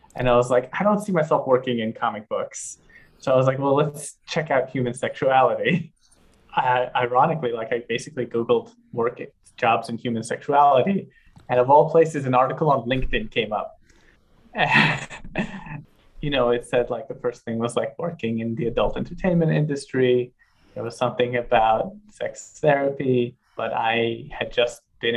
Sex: male